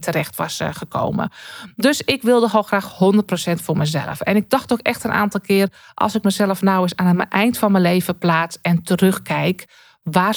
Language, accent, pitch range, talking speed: Dutch, Dutch, 175-220 Hz, 205 wpm